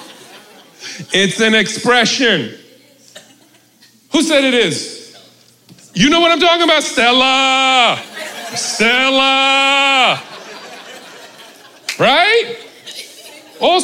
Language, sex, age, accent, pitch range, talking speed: English, male, 40-59, American, 200-290 Hz, 75 wpm